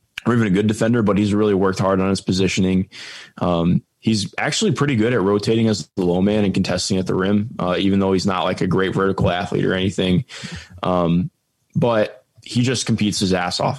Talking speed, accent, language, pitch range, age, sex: 215 wpm, American, English, 95-115 Hz, 20-39, male